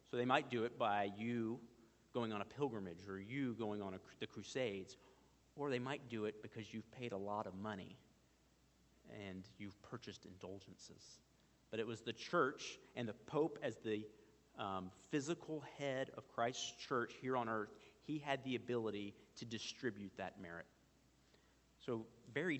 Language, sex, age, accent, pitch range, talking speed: English, male, 40-59, American, 100-120 Hz, 160 wpm